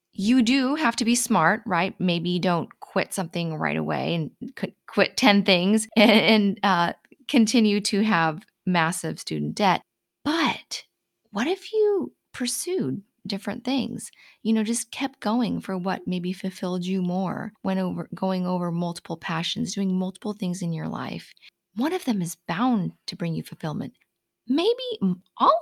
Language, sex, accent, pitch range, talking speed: English, female, American, 175-225 Hz, 150 wpm